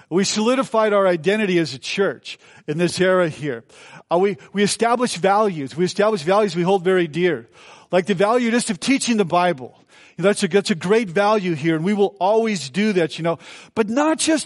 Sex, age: male, 40-59